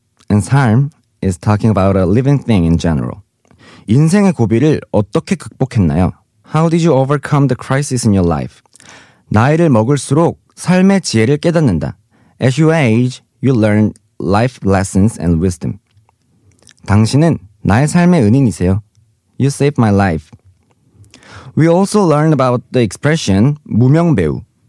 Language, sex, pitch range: Korean, male, 105-155 Hz